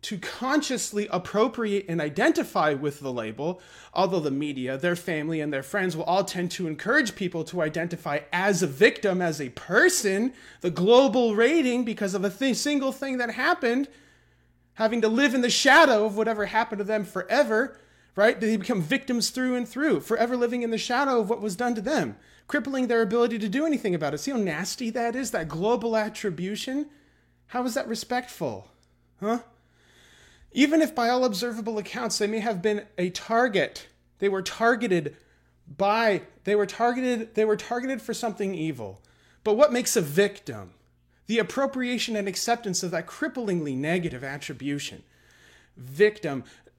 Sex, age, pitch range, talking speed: male, 30-49, 175-235 Hz, 170 wpm